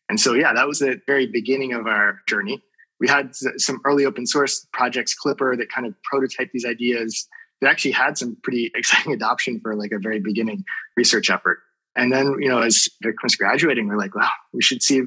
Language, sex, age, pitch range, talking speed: English, male, 20-39, 115-145 Hz, 210 wpm